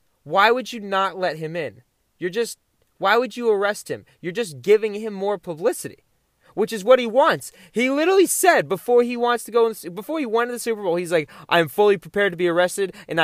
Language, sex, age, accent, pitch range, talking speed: English, male, 20-39, American, 145-225 Hz, 225 wpm